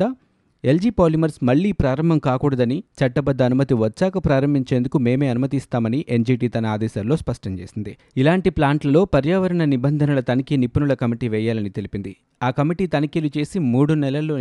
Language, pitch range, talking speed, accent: Telugu, 120-150 Hz, 130 wpm, native